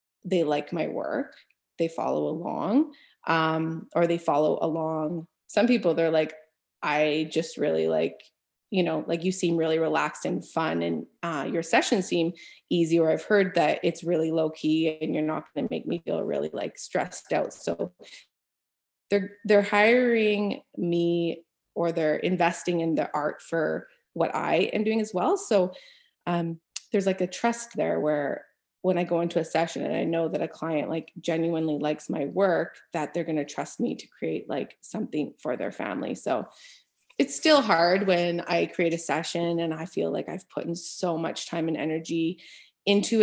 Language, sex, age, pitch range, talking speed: English, female, 20-39, 160-190 Hz, 185 wpm